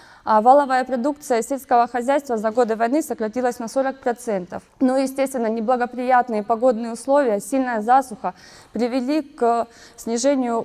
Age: 20-39